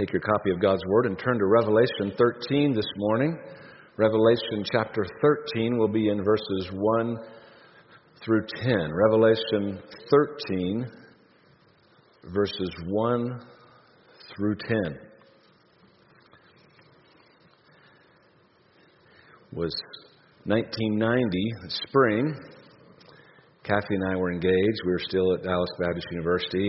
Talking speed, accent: 100 wpm, American